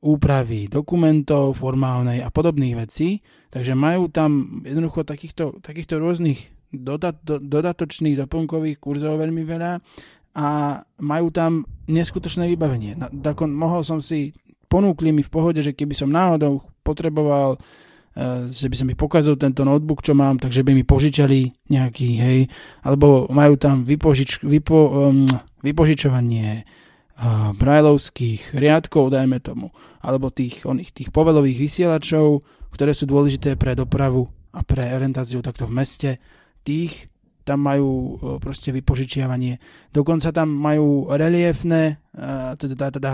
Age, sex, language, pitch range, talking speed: 20-39, male, Slovak, 135-155 Hz, 125 wpm